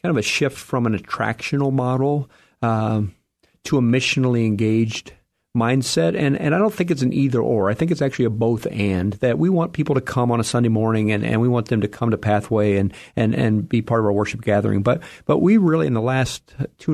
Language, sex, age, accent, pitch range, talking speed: English, male, 50-69, American, 115-135 Hz, 235 wpm